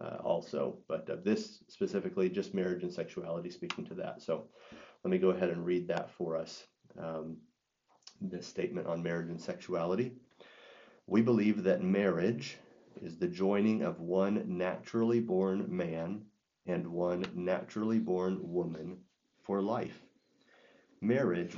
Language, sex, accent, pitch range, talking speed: English, male, American, 90-110 Hz, 140 wpm